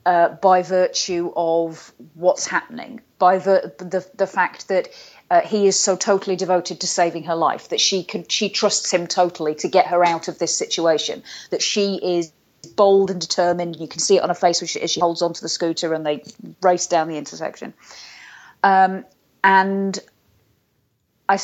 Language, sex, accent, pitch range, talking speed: English, female, British, 170-210 Hz, 180 wpm